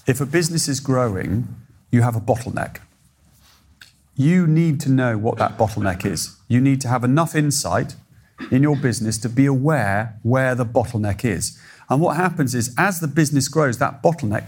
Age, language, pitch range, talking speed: 40-59, English, 115-145 Hz, 180 wpm